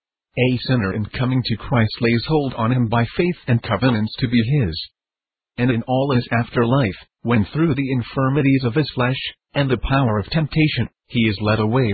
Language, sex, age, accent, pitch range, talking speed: English, male, 50-69, American, 115-140 Hz, 190 wpm